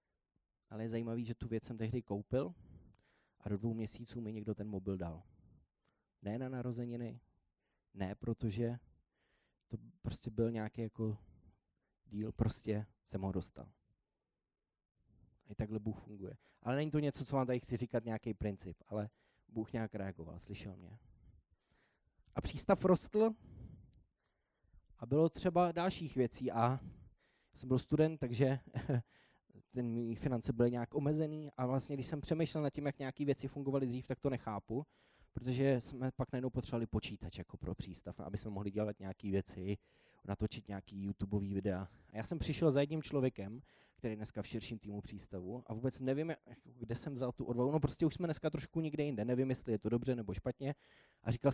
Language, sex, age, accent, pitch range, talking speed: Czech, male, 20-39, native, 105-130 Hz, 170 wpm